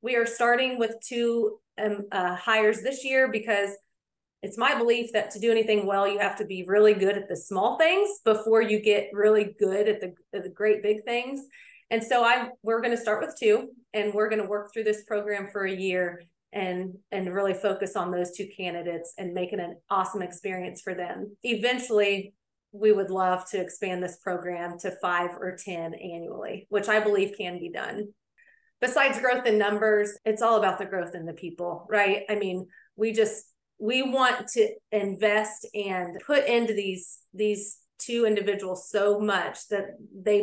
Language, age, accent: English, 30-49, American